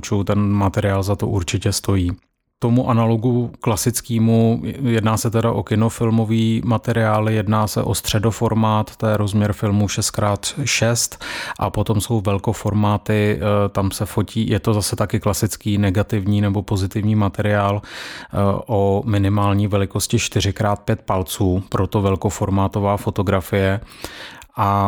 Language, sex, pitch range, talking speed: Czech, male, 100-110 Hz, 120 wpm